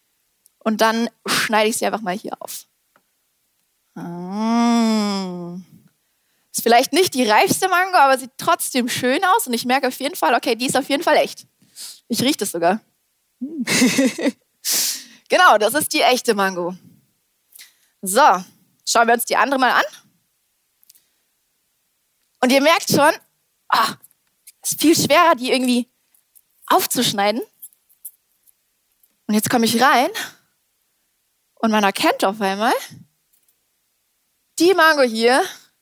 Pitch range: 215-285 Hz